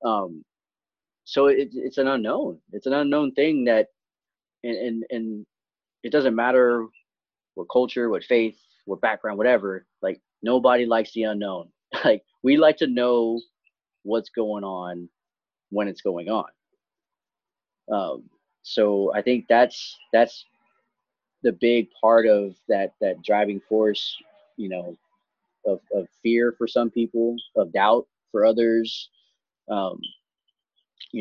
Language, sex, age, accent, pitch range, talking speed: English, male, 30-49, American, 100-130 Hz, 130 wpm